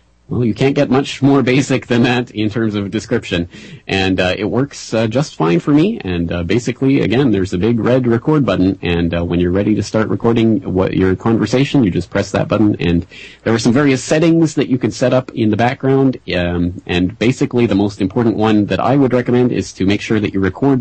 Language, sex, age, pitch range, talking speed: English, male, 30-49, 90-115 Hz, 230 wpm